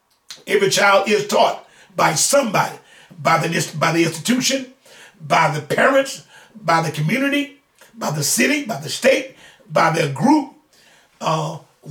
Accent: American